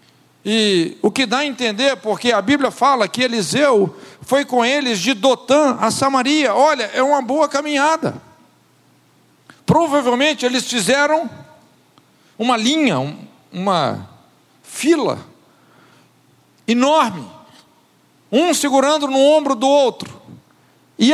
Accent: Brazilian